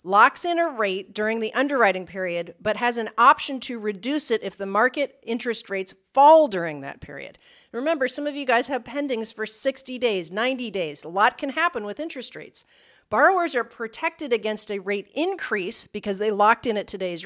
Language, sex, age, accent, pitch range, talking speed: English, female, 40-59, American, 185-245 Hz, 195 wpm